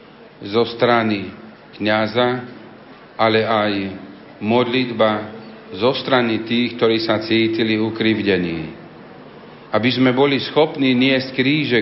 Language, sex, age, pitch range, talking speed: Slovak, male, 40-59, 110-130 Hz, 95 wpm